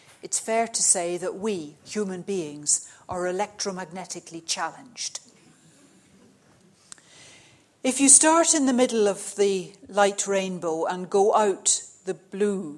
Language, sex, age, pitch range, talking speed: English, female, 60-79, 175-235 Hz, 120 wpm